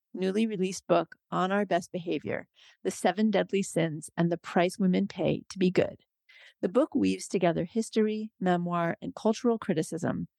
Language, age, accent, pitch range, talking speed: English, 40-59, American, 175-210 Hz, 160 wpm